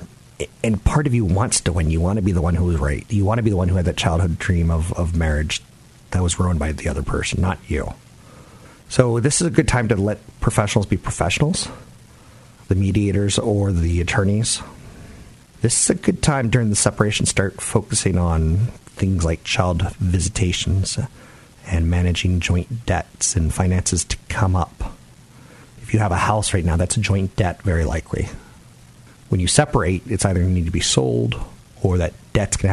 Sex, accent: male, American